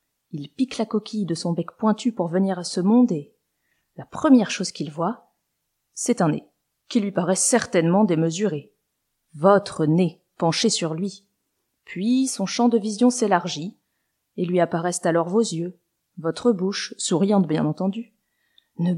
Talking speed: 160 wpm